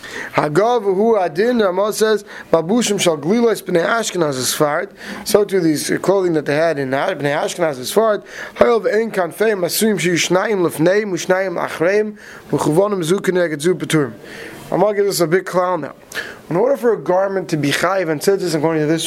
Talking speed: 105 wpm